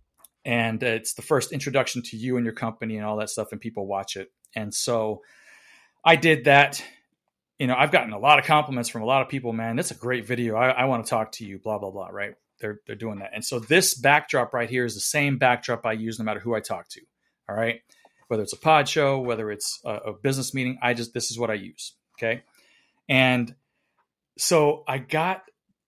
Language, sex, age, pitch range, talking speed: English, male, 30-49, 115-140 Hz, 230 wpm